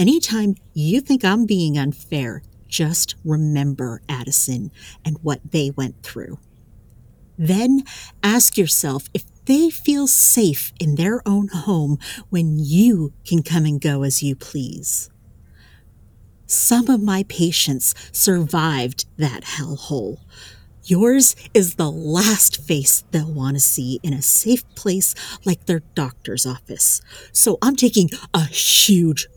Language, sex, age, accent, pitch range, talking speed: English, female, 40-59, American, 140-200 Hz, 130 wpm